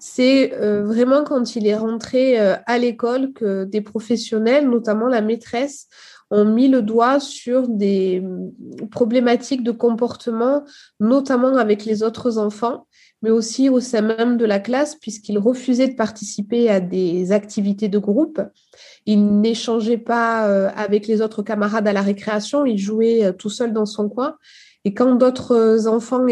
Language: French